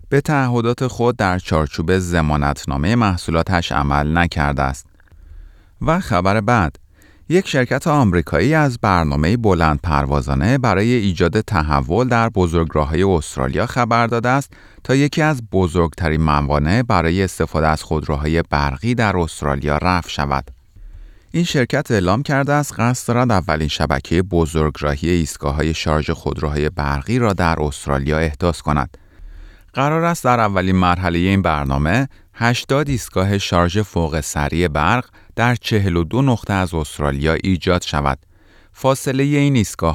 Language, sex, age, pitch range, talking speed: Persian, male, 30-49, 80-110 Hz, 130 wpm